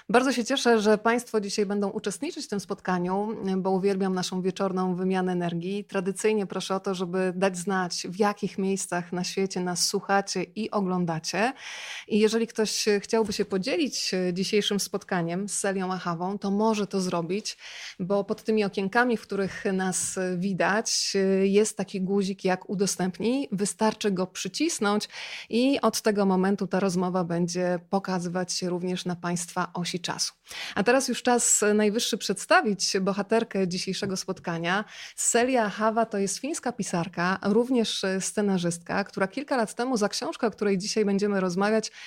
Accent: native